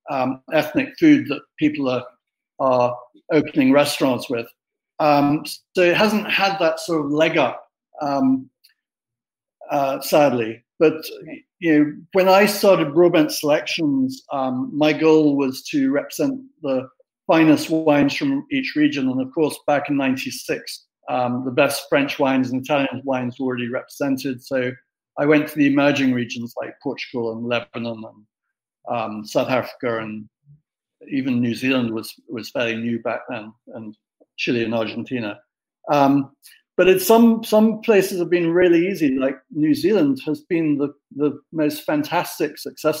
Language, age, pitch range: English, 50-69, 130-180 Hz